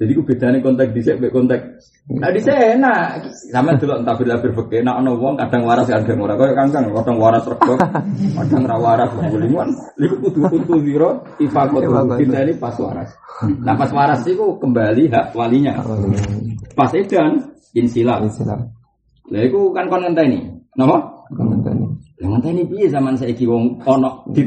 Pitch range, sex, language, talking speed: 115-160 Hz, male, Indonesian, 95 wpm